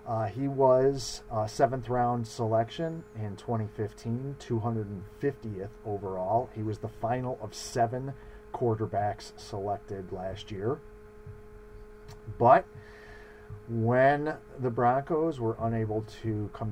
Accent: American